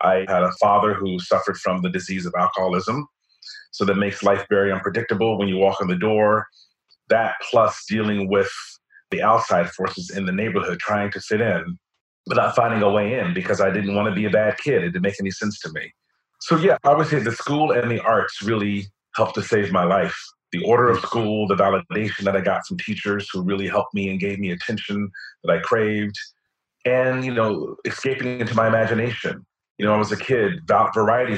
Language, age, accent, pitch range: English, 40-59, American, 100-115 Hz